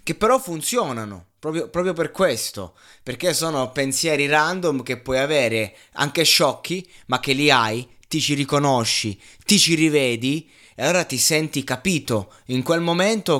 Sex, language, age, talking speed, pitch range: male, Italian, 20-39, 150 wpm, 115-140 Hz